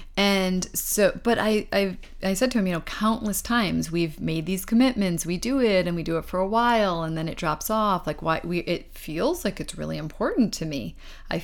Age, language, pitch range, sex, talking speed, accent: 30-49, English, 165-200 Hz, female, 230 wpm, American